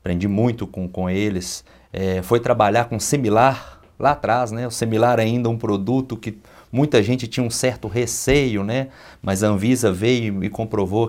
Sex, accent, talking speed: male, Brazilian, 180 wpm